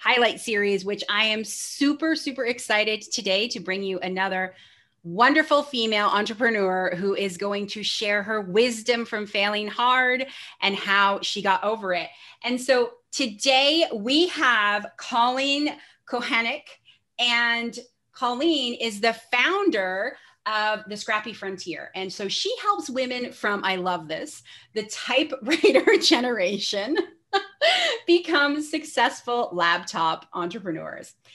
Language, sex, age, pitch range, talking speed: English, female, 30-49, 200-275 Hz, 125 wpm